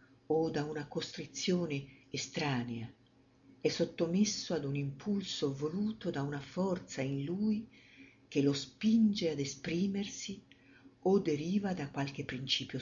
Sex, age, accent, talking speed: female, 50-69, native, 120 wpm